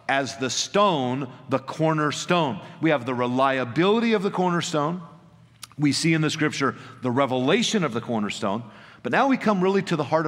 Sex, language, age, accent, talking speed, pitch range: male, English, 50-69, American, 175 wpm, 130-180 Hz